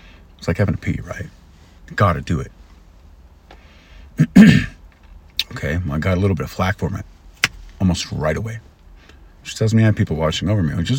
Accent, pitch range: American, 75-110 Hz